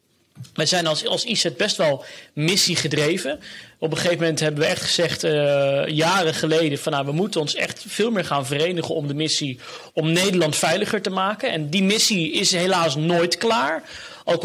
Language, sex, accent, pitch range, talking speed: Dutch, male, Dutch, 165-220 Hz, 190 wpm